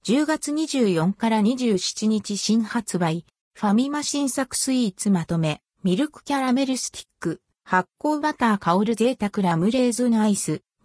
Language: Japanese